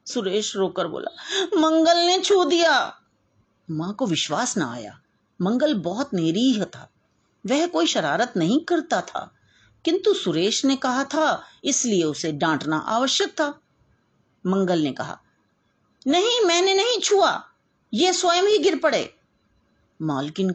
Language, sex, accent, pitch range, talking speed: Hindi, female, native, 170-275 Hz, 130 wpm